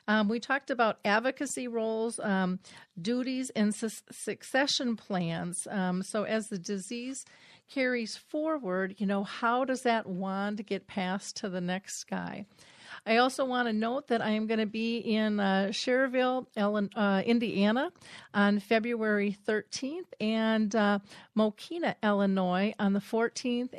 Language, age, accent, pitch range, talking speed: English, 40-59, American, 200-240 Hz, 145 wpm